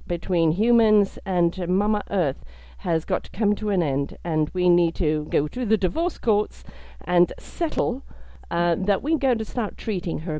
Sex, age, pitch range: female, 50-69, 145-210 Hz